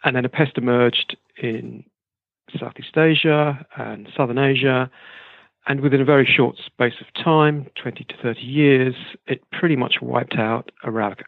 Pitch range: 120-150 Hz